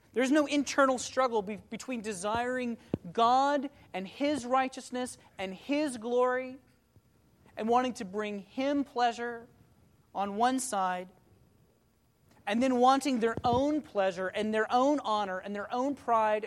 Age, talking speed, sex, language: 30-49, 130 wpm, male, English